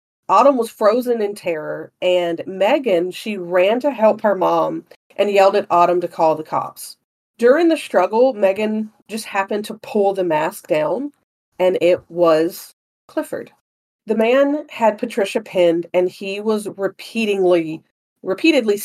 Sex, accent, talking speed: female, American, 145 wpm